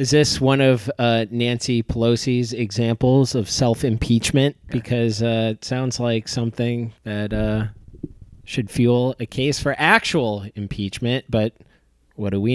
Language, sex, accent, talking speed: English, male, American, 140 wpm